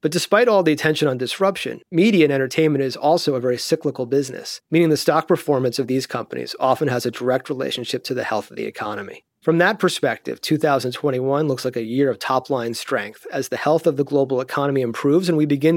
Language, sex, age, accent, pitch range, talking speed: English, male, 30-49, American, 130-160 Hz, 215 wpm